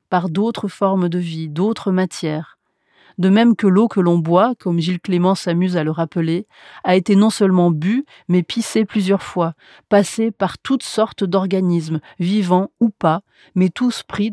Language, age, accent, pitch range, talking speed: French, 30-49, French, 170-200 Hz, 170 wpm